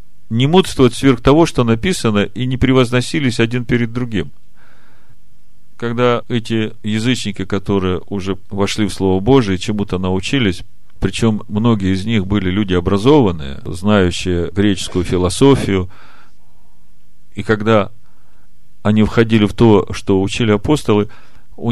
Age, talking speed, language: 40-59, 120 wpm, Russian